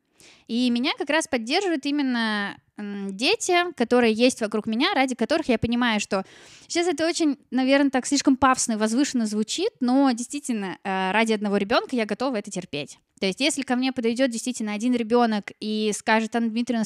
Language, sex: Russian, female